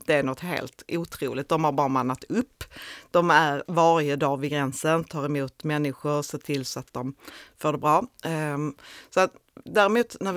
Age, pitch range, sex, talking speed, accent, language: 30-49, 145-185 Hz, female, 180 wpm, native, Swedish